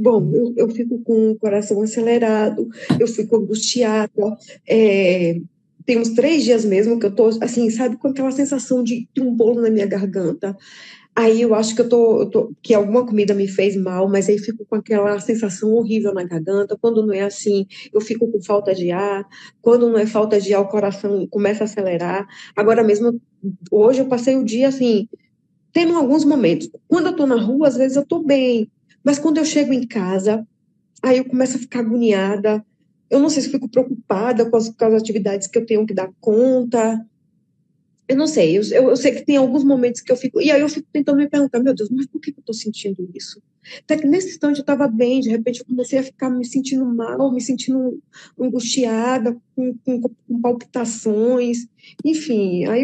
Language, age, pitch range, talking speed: Portuguese, 20-39, 210-260 Hz, 205 wpm